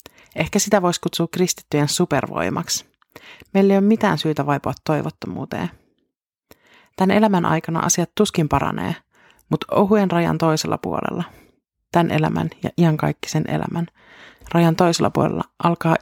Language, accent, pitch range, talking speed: Finnish, native, 140-170 Hz, 120 wpm